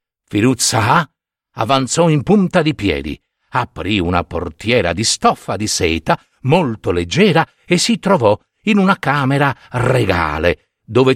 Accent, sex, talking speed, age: native, male, 125 wpm, 50-69